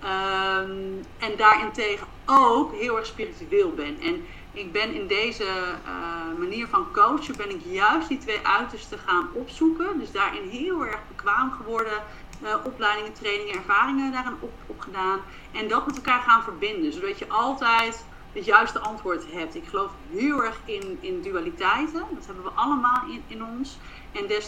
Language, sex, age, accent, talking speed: English, female, 30-49, Dutch, 160 wpm